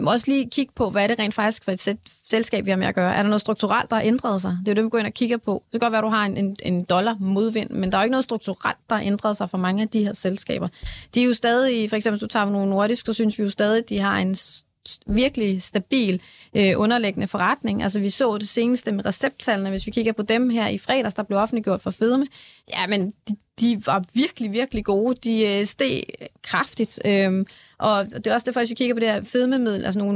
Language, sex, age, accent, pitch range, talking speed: Danish, female, 30-49, native, 200-230 Hz, 260 wpm